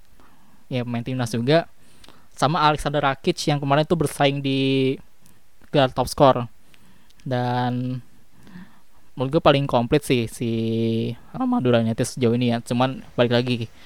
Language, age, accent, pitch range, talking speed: Indonesian, 20-39, native, 120-140 Hz, 125 wpm